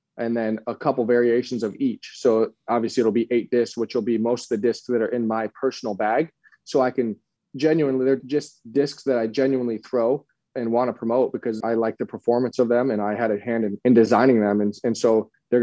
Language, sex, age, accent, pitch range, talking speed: English, male, 20-39, American, 110-125 Hz, 235 wpm